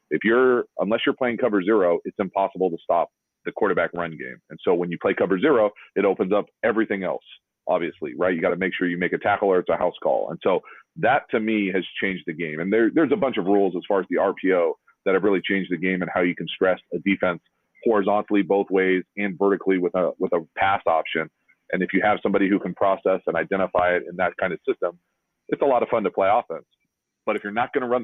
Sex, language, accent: male, English, American